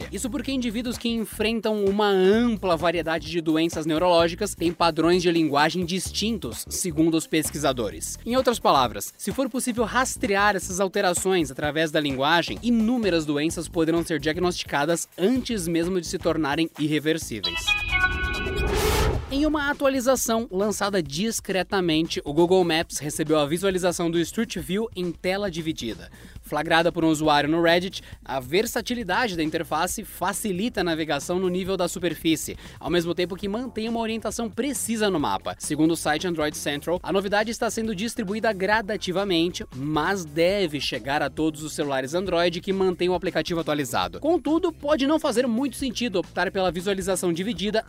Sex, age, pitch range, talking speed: male, 20-39, 165-220 Hz, 150 wpm